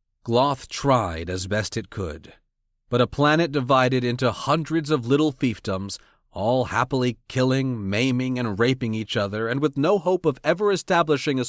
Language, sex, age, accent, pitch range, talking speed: English, male, 30-49, American, 105-145 Hz, 160 wpm